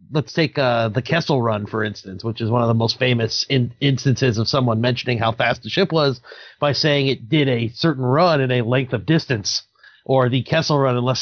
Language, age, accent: English, 30-49, American